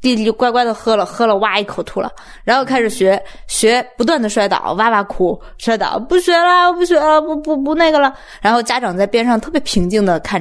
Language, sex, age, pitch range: Chinese, female, 20-39, 200-285 Hz